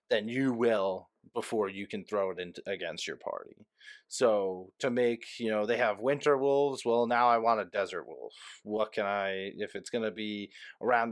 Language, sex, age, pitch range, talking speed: English, male, 20-39, 105-130 Hz, 195 wpm